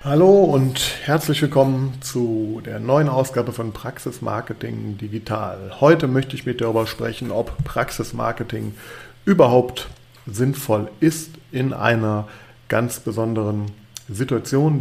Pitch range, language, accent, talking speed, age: 110-130 Hz, German, German, 115 wpm, 40-59